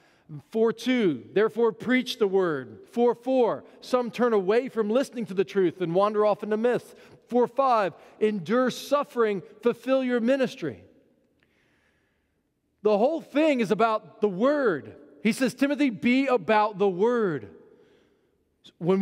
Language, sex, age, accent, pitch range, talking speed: English, male, 40-59, American, 180-255 Hz, 135 wpm